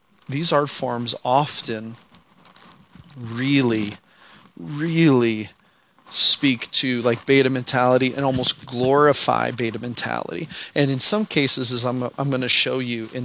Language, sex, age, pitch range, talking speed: English, male, 30-49, 120-145 Hz, 125 wpm